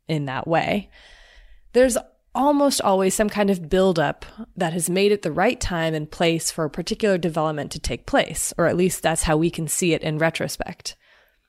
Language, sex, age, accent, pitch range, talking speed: English, female, 20-39, American, 160-215 Hz, 195 wpm